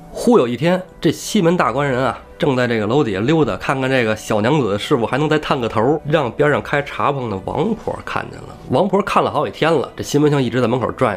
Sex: male